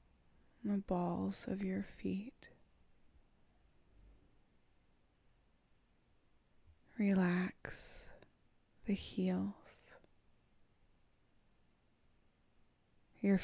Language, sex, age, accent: English, female, 20-39, American